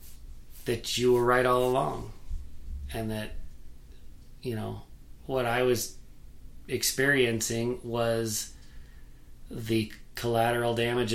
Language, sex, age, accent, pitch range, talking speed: English, male, 30-49, American, 100-130 Hz, 95 wpm